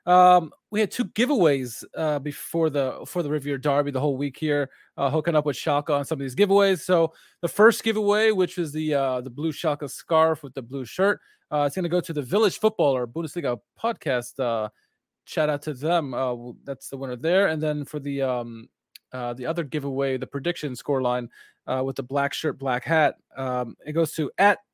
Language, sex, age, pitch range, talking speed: English, male, 20-39, 135-175 Hz, 210 wpm